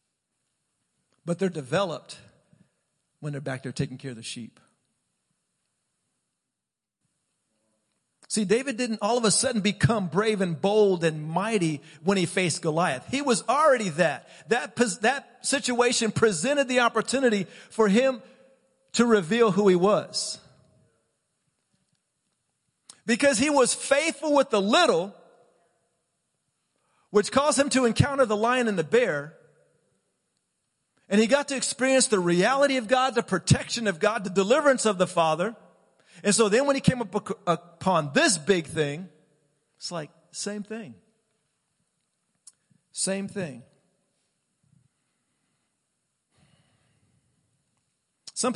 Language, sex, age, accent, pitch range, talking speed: English, male, 50-69, American, 170-235 Hz, 120 wpm